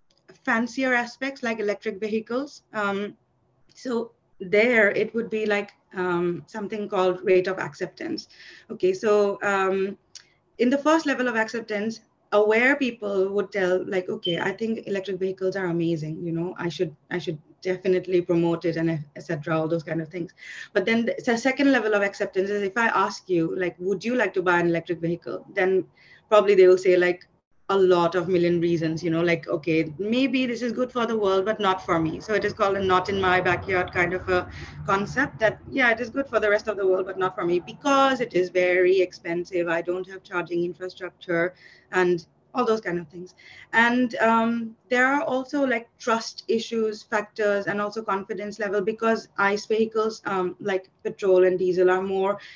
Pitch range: 180-220 Hz